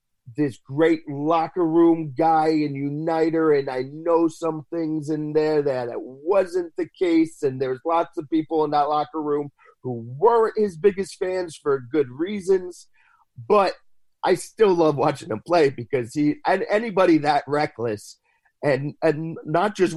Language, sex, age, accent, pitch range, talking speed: English, male, 30-49, American, 120-160 Hz, 155 wpm